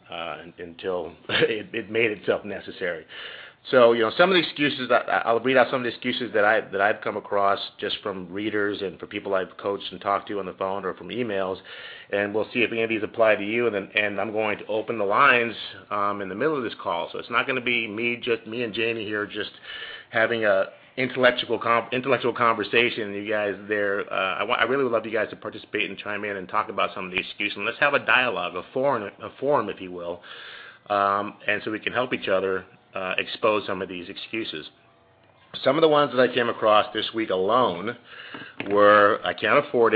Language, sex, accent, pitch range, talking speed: English, male, American, 100-115 Hz, 230 wpm